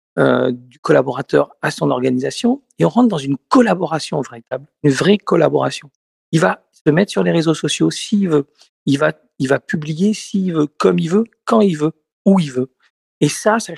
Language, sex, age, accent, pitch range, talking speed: French, male, 50-69, French, 140-185 Hz, 195 wpm